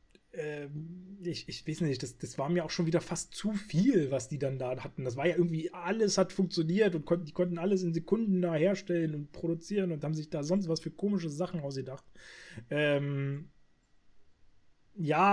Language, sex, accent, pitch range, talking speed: German, male, German, 130-180 Hz, 185 wpm